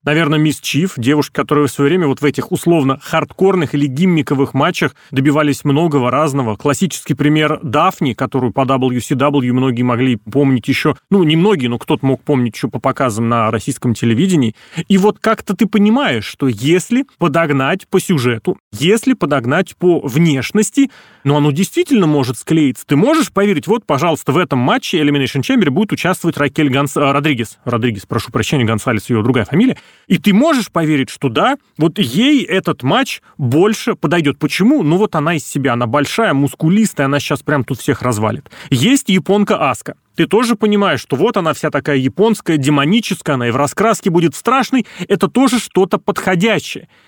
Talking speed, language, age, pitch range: 170 wpm, Russian, 30-49, 140-195 Hz